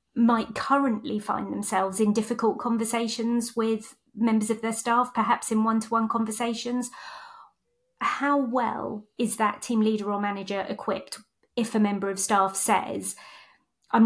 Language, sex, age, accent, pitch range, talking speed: English, female, 30-49, British, 205-235 Hz, 135 wpm